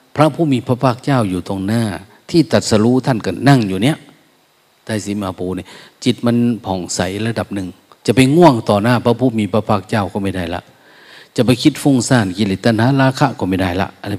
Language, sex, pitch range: Thai, male, 95-125 Hz